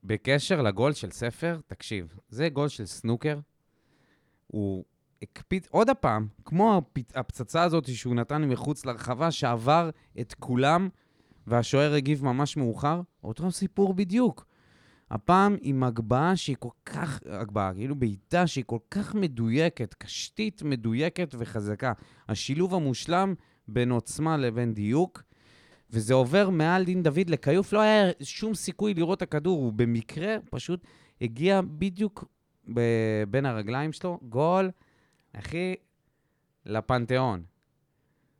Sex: male